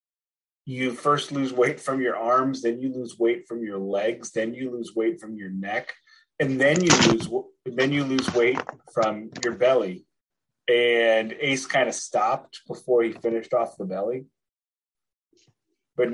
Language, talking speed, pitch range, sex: English, 165 wpm, 115-135 Hz, male